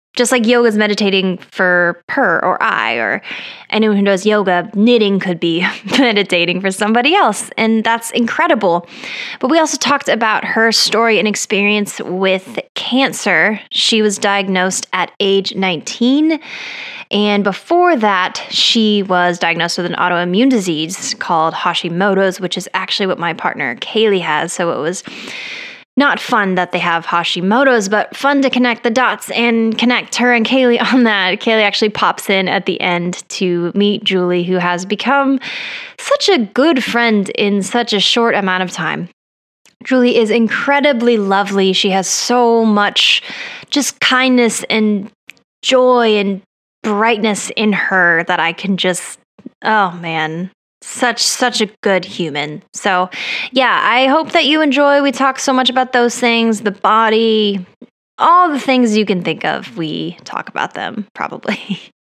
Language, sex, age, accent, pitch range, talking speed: English, female, 10-29, American, 190-245 Hz, 155 wpm